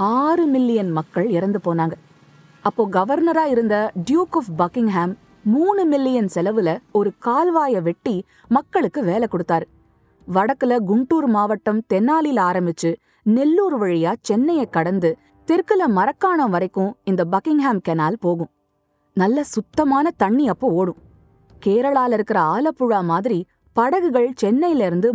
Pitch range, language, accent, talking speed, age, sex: 180-270 Hz, Tamil, native, 110 wpm, 20-39, female